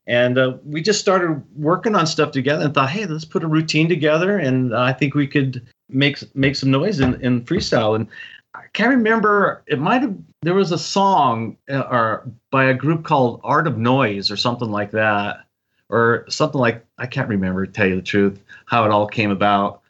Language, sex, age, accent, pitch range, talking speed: English, male, 40-59, American, 115-145 Hz, 215 wpm